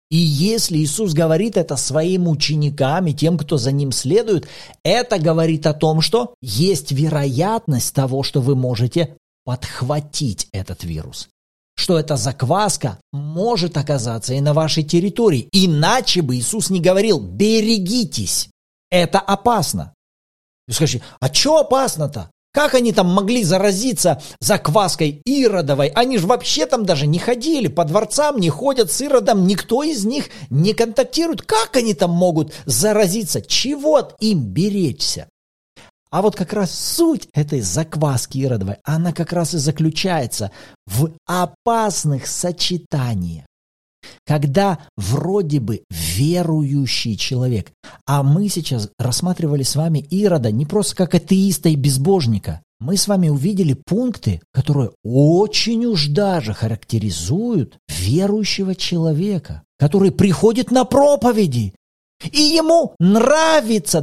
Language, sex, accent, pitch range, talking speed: Russian, male, native, 140-215 Hz, 125 wpm